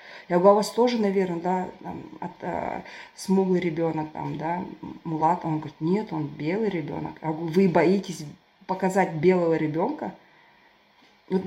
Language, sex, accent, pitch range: Russian, female, native, 165-220 Hz